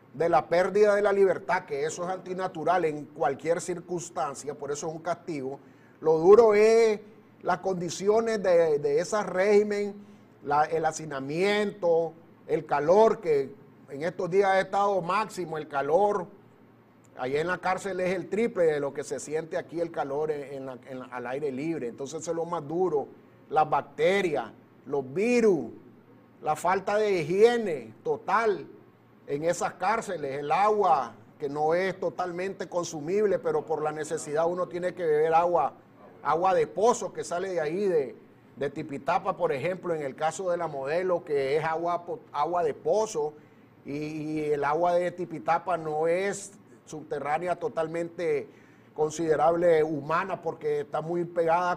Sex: male